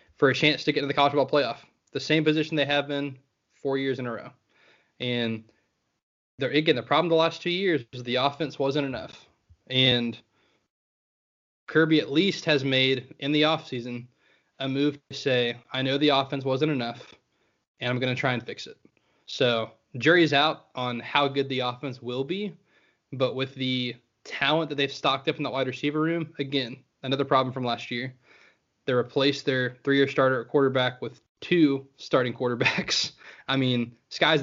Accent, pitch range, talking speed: American, 125-150 Hz, 185 wpm